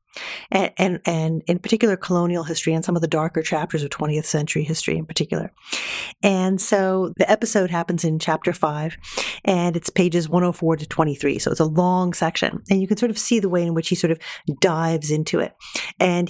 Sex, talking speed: female, 205 wpm